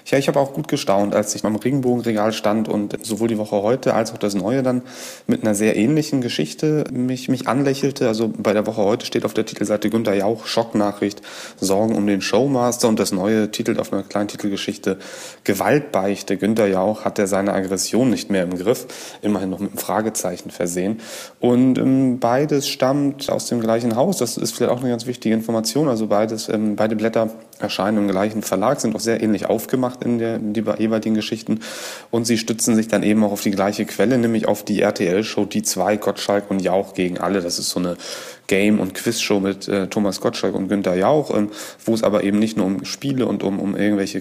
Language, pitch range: German, 100-115 Hz